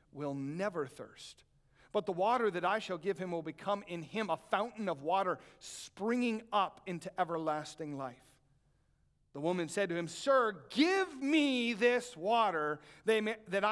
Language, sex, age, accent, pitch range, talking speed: English, male, 40-59, American, 150-220 Hz, 155 wpm